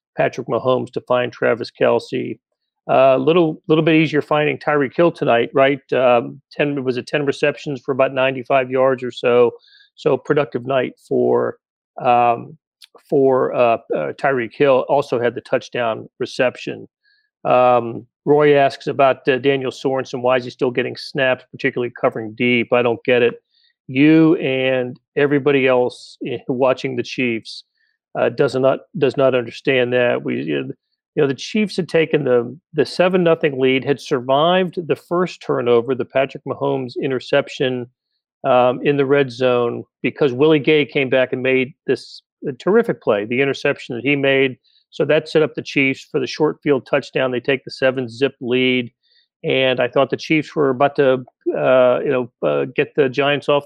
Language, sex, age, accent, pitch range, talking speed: English, male, 40-59, American, 125-150 Hz, 175 wpm